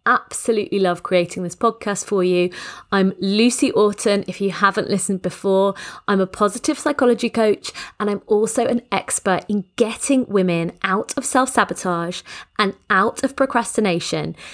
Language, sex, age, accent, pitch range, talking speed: English, female, 30-49, British, 185-250 Hz, 145 wpm